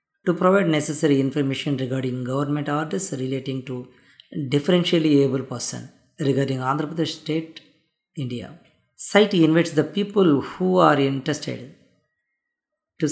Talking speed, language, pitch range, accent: 115 wpm, Telugu, 135-160 Hz, native